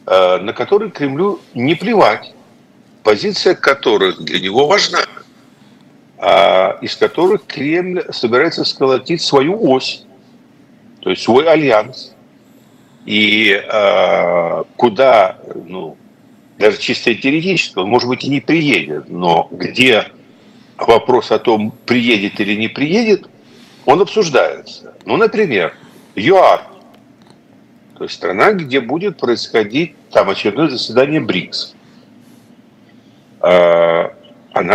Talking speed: 100 wpm